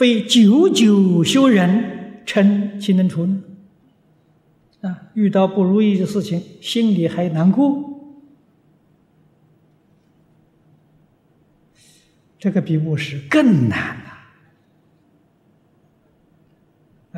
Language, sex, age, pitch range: Chinese, male, 60-79, 145-180 Hz